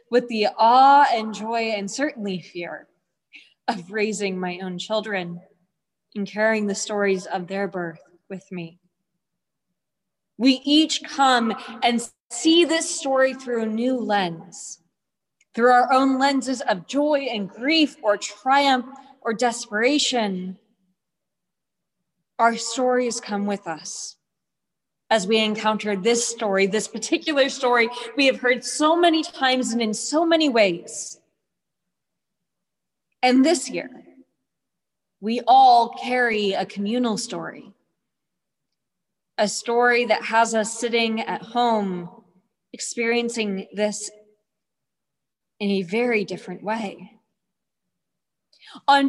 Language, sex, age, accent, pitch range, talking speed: English, female, 20-39, American, 200-255 Hz, 115 wpm